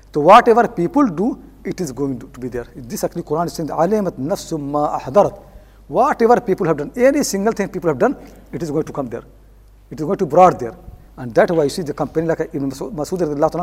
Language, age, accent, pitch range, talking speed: English, 60-79, Indian, 150-210 Hz, 225 wpm